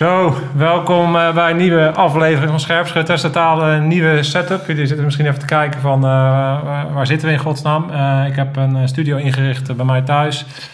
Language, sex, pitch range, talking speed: Dutch, male, 120-140 Hz, 190 wpm